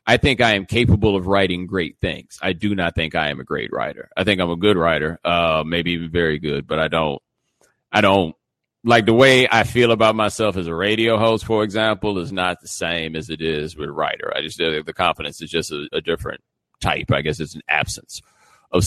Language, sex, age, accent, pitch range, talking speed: English, male, 40-59, American, 80-105 Hz, 230 wpm